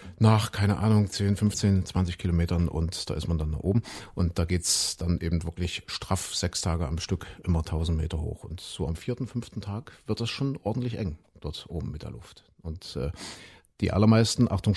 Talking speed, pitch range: 205 wpm, 85-110 Hz